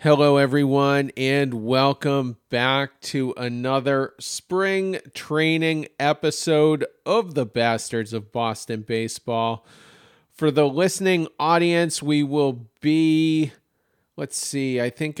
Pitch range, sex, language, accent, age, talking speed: 130-155 Hz, male, English, American, 40-59, 105 wpm